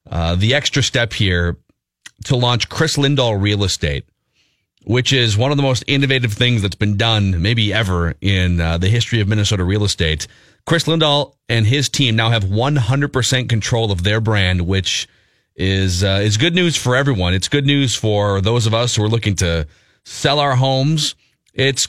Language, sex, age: English, male, 40-59